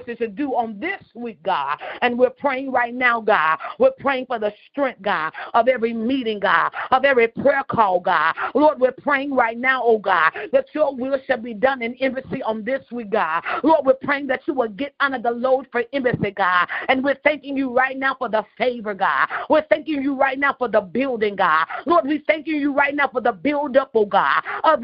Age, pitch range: 50-69, 230-275 Hz